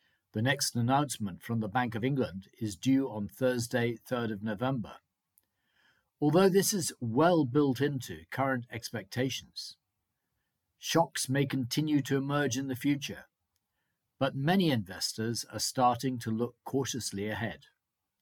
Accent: British